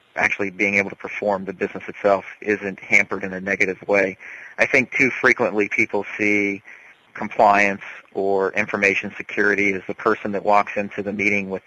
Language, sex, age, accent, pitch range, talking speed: English, male, 40-59, American, 95-105 Hz, 170 wpm